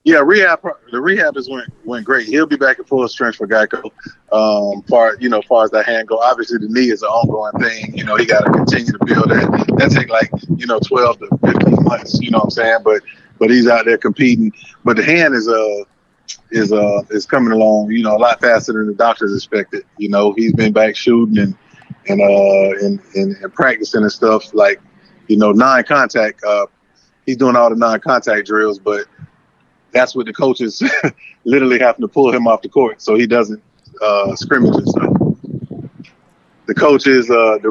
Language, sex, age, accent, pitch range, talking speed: English, male, 30-49, American, 110-130 Hz, 210 wpm